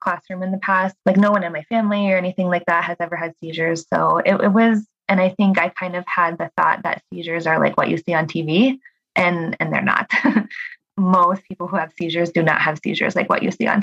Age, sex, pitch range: 20-39, female, 170-200 Hz